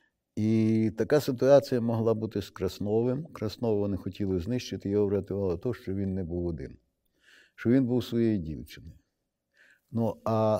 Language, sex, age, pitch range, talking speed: Ukrainian, male, 60-79, 95-120 Hz, 145 wpm